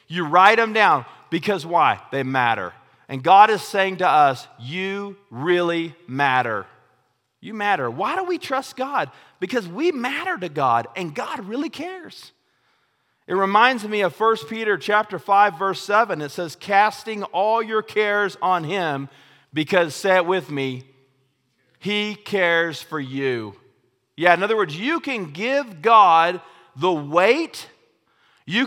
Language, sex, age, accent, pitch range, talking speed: English, male, 40-59, American, 155-215 Hz, 150 wpm